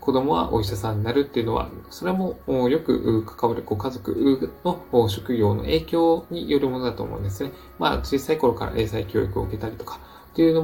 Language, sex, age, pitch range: Japanese, male, 20-39, 105-140 Hz